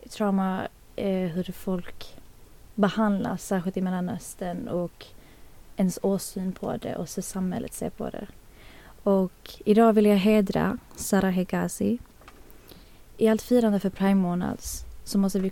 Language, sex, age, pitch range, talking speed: Swedish, female, 20-39, 185-215 Hz, 135 wpm